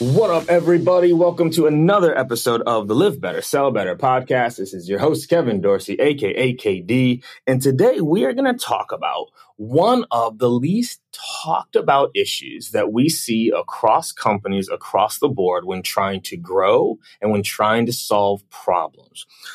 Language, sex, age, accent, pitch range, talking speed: English, male, 30-49, American, 115-160 Hz, 170 wpm